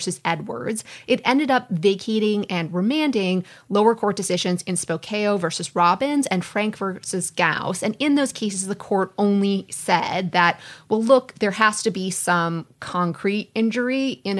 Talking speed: 160 wpm